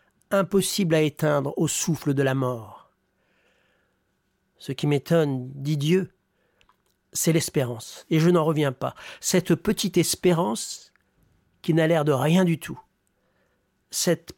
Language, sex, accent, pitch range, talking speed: French, male, French, 140-170 Hz, 130 wpm